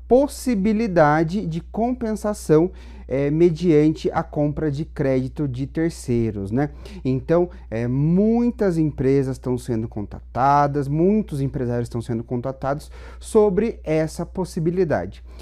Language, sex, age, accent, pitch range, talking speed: Portuguese, male, 40-59, Brazilian, 145-195 Hz, 105 wpm